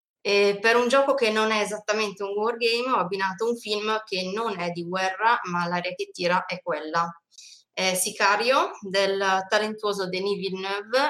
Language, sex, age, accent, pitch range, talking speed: Italian, female, 20-39, native, 180-215 Hz, 160 wpm